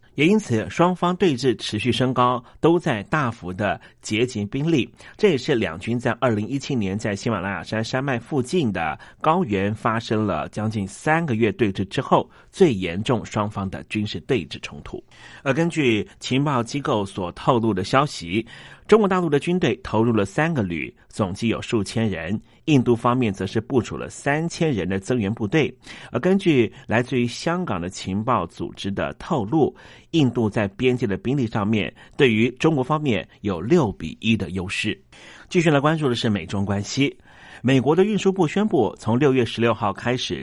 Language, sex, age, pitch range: Chinese, male, 30-49, 100-140 Hz